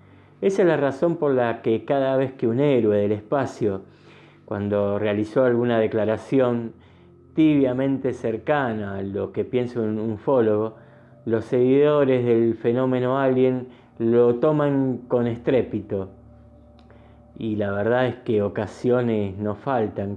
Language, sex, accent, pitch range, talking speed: Spanish, male, Argentinian, 110-135 Hz, 130 wpm